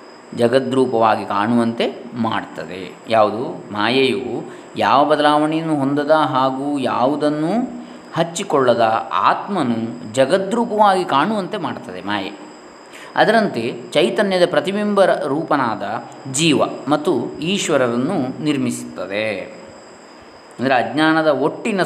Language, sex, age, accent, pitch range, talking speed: Kannada, male, 20-39, native, 130-165 Hz, 75 wpm